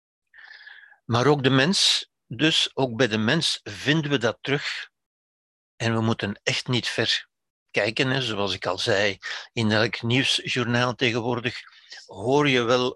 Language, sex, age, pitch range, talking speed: Dutch, male, 60-79, 115-140 Hz, 145 wpm